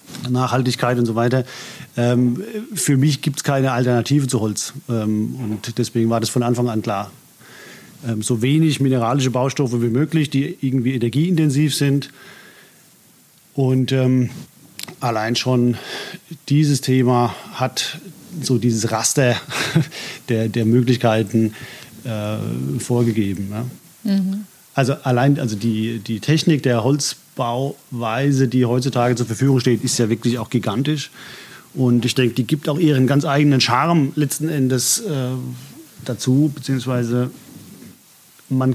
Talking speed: 120 wpm